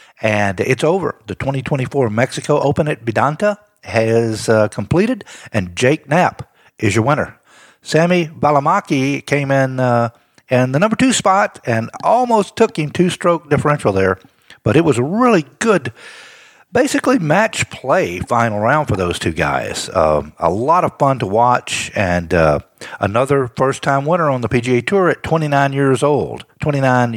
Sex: male